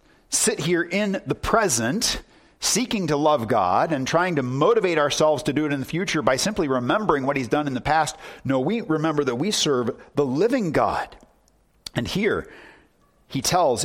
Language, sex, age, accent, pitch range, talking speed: English, male, 40-59, American, 130-200 Hz, 180 wpm